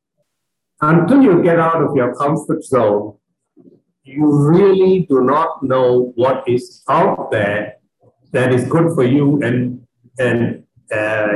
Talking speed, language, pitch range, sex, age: 130 wpm, English, 125-170 Hz, male, 50-69